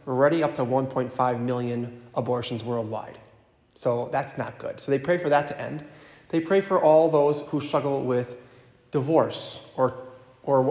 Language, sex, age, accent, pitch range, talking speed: English, male, 30-49, American, 125-150 Hz, 165 wpm